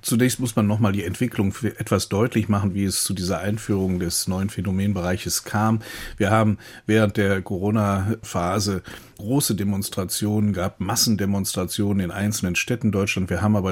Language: German